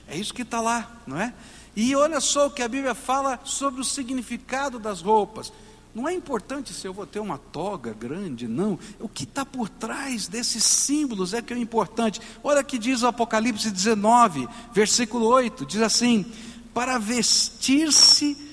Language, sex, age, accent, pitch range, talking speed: Portuguese, male, 60-79, Brazilian, 145-235 Hz, 180 wpm